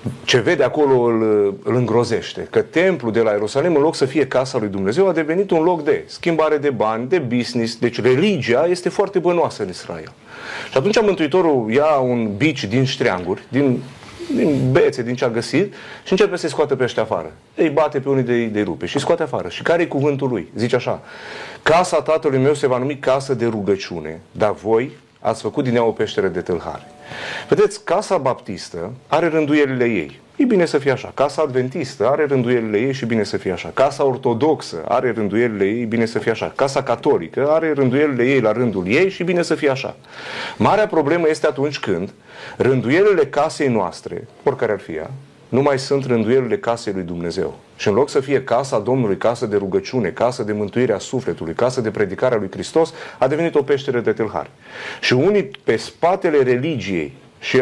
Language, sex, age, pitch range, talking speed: Romanian, male, 30-49, 120-165 Hz, 195 wpm